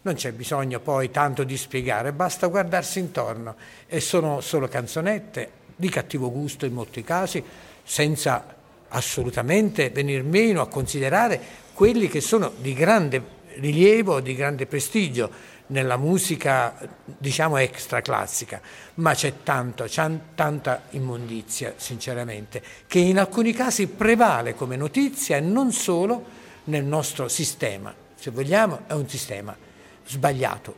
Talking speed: 130 wpm